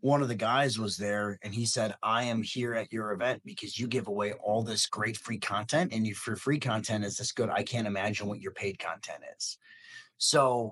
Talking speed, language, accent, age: 225 wpm, English, American, 30-49